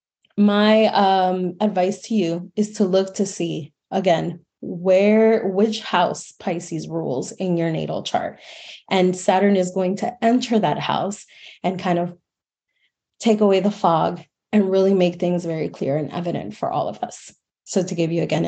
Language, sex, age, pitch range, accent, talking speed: English, female, 20-39, 175-215 Hz, American, 170 wpm